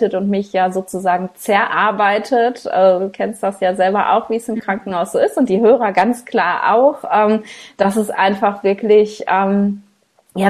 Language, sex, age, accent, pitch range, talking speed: German, female, 20-39, German, 185-215 Hz, 165 wpm